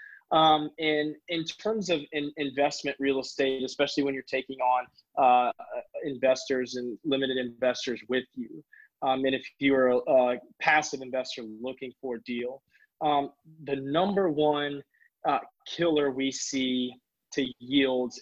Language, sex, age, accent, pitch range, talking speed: English, male, 20-39, American, 130-150 Hz, 140 wpm